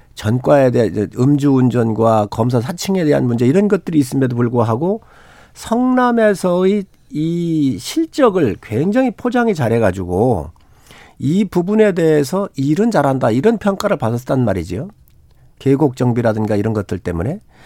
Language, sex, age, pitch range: Korean, male, 50-69, 120-190 Hz